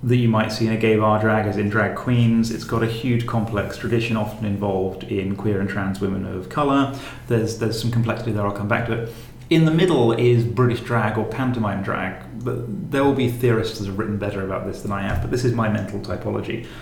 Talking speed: 240 wpm